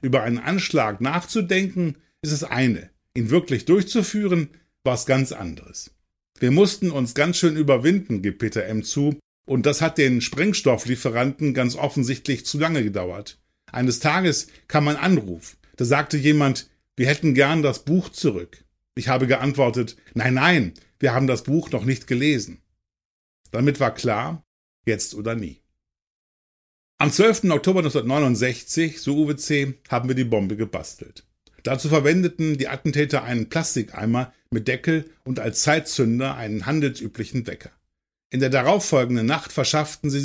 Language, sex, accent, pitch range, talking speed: German, male, German, 115-155 Hz, 145 wpm